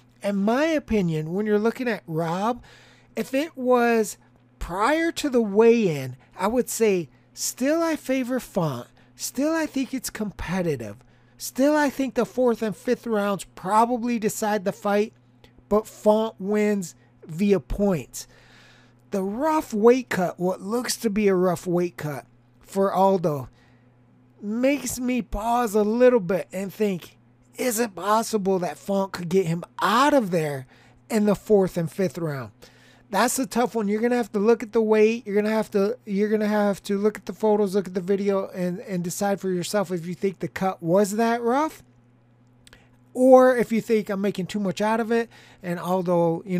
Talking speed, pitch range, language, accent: 180 wpm, 170-225 Hz, English, American